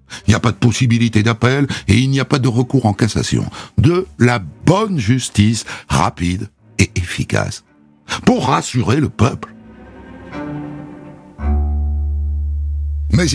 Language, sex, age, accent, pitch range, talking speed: French, male, 60-79, French, 85-125 Hz, 125 wpm